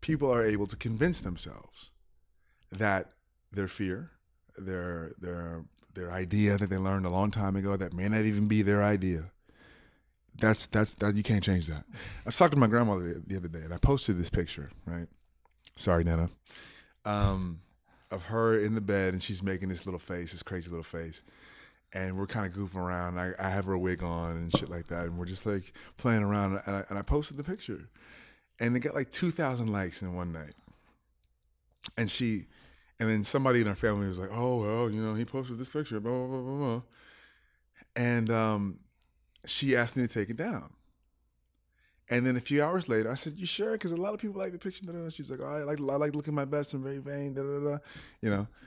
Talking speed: 210 wpm